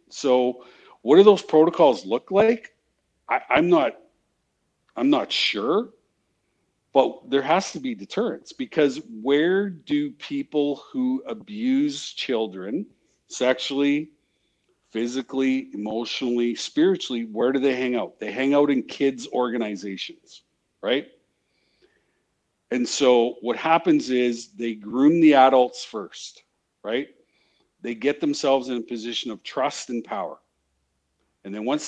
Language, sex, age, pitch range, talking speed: English, male, 50-69, 115-170 Hz, 125 wpm